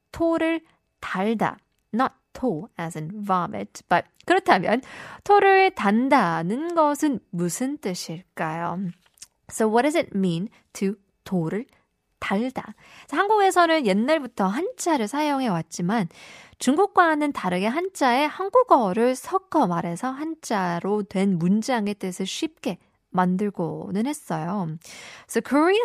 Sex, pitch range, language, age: female, 185-300 Hz, Korean, 20-39